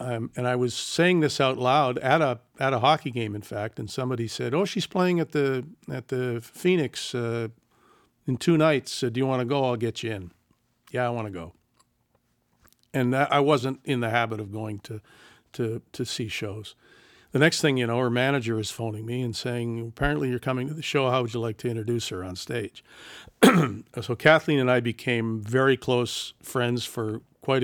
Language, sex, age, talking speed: English, male, 50-69, 210 wpm